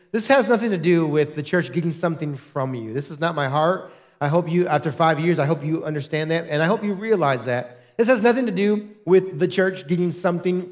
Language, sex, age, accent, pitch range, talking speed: English, male, 30-49, American, 160-220 Hz, 245 wpm